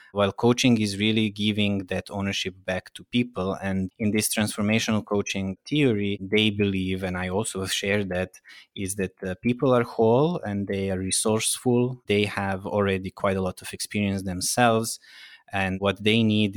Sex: male